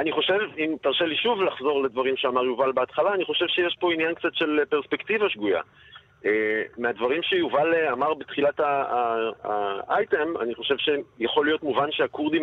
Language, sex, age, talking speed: Hebrew, male, 40-59, 155 wpm